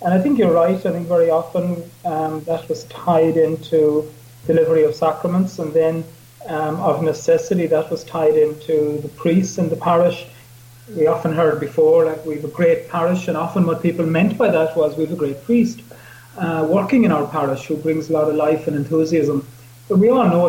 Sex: male